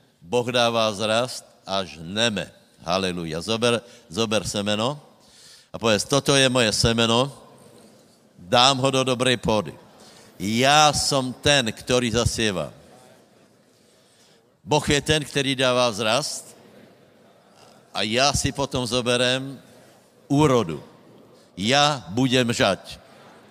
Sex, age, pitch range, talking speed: male, 60-79, 125-150 Hz, 100 wpm